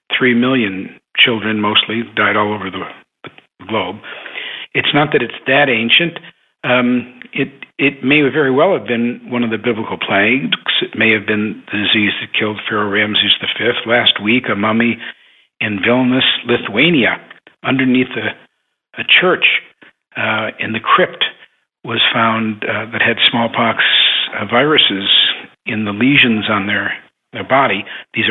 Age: 60-79